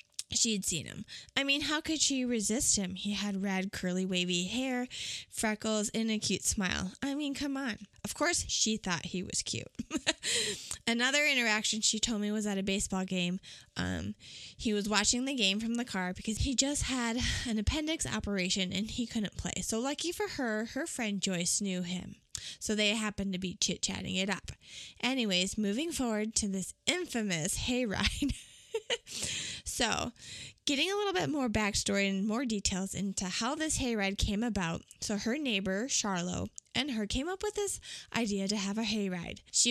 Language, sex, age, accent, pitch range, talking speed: English, female, 20-39, American, 190-255 Hz, 180 wpm